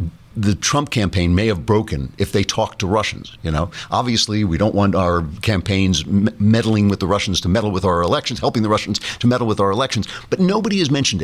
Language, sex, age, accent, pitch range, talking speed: English, male, 50-69, American, 100-125 Hz, 215 wpm